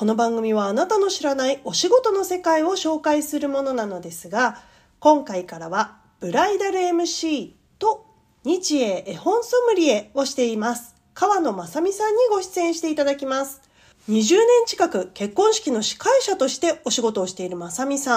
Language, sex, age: Japanese, female, 40-59